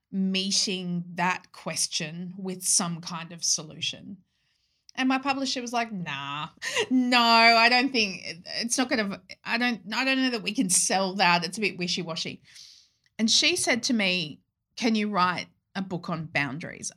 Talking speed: 165 wpm